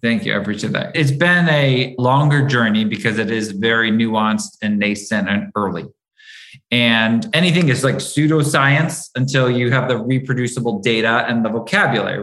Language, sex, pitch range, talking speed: English, male, 110-130 Hz, 160 wpm